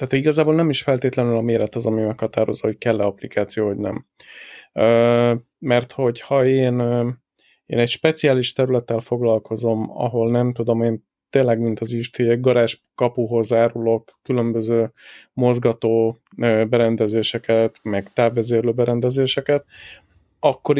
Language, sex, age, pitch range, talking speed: Hungarian, male, 30-49, 115-130 Hz, 120 wpm